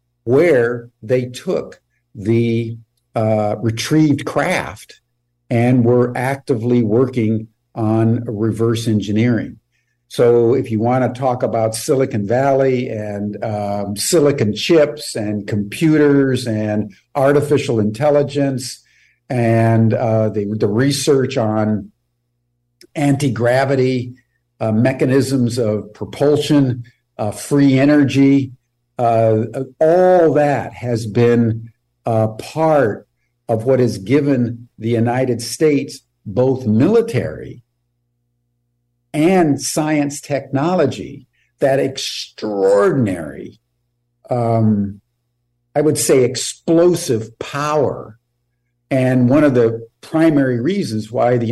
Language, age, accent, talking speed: English, 50-69, American, 95 wpm